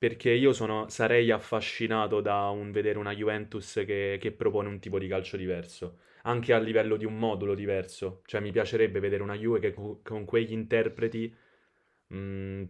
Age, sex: 20-39, male